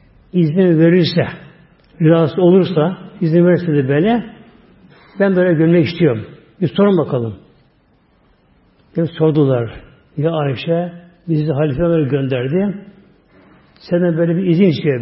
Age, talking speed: 60-79, 110 wpm